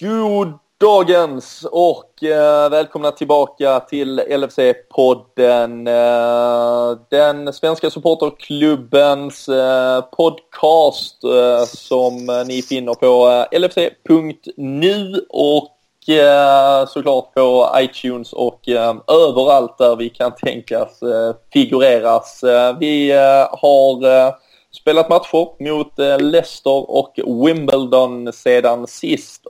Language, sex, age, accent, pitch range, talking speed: Swedish, male, 20-39, native, 120-145 Hz, 75 wpm